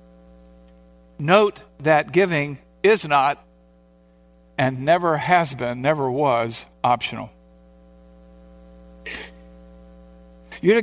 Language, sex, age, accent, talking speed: English, male, 50-69, American, 70 wpm